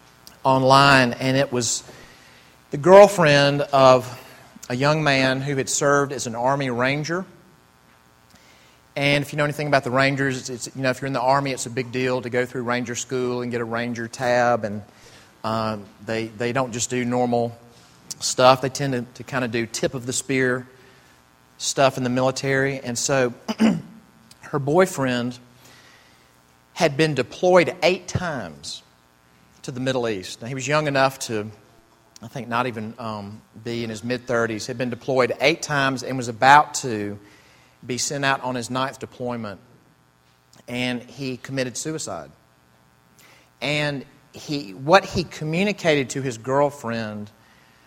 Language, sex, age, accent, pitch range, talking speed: English, male, 40-59, American, 110-135 Hz, 160 wpm